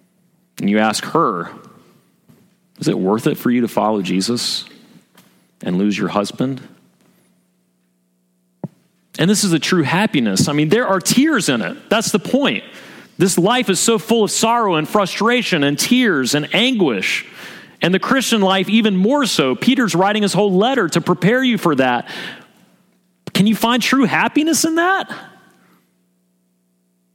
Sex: male